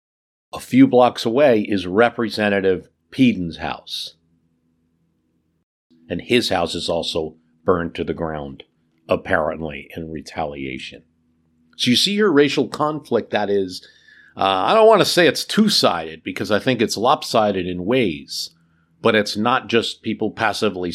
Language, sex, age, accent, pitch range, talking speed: English, male, 50-69, American, 80-110 Hz, 140 wpm